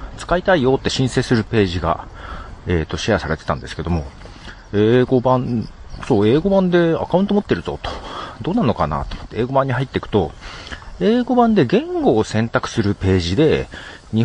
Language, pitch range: Japanese, 85-145 Hz